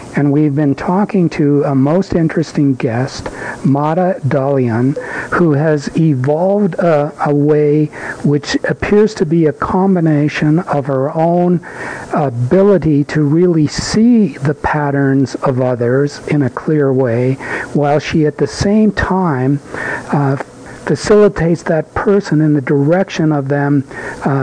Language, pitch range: English, 140-170 Hz